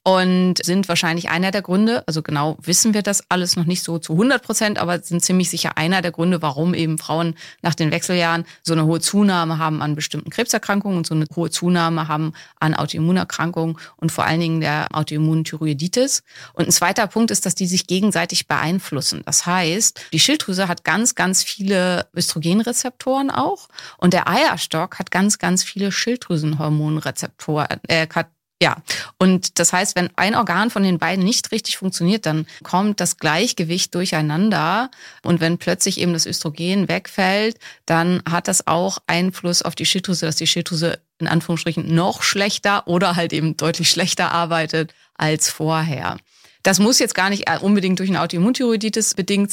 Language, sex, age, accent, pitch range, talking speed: German, female, 30-49, German, 155-185 Hz, 170 wpm